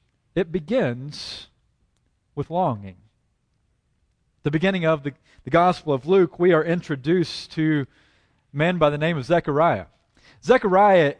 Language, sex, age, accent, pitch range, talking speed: English, male, 40-59, American, 145-220 Hz, 130 wpm